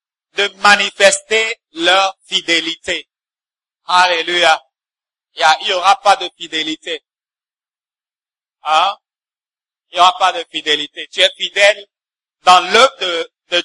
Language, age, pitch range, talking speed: English, 50-69, 175-235 Hz, 110 wpm